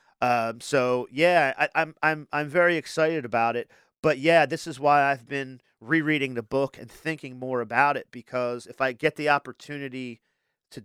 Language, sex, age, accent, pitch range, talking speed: English, male, 40-59, American, 125-155 Hz, 185 wpm